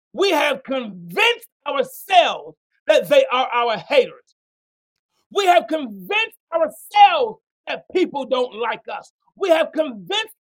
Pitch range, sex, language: 275-390 Hz, male, English